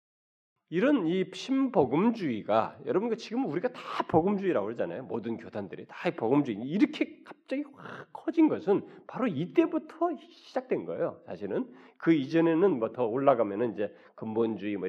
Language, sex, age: Korean, male, 40-59